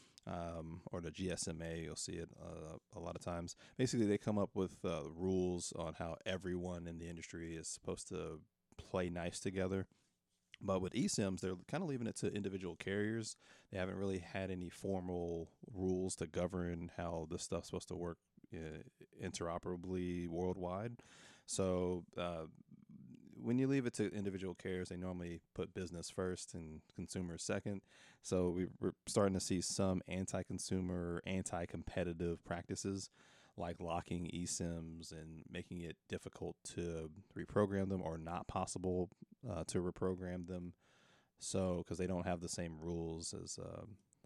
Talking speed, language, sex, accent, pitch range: 155 wpm, English, male, American, 85-95 Hz